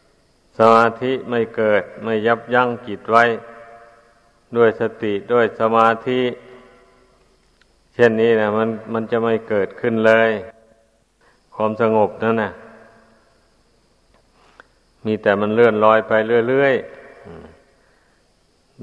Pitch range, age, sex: 110-120 Hz, 60-79, male